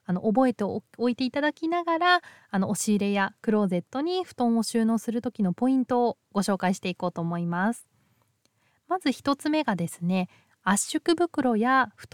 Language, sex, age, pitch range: Japanese, female, 20-39, 185-275 Hz